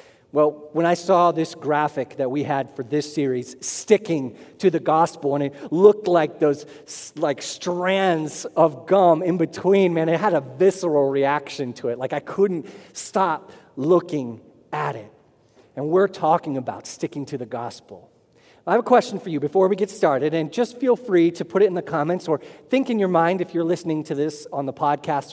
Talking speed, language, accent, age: 195 wpm, English, American, 40-59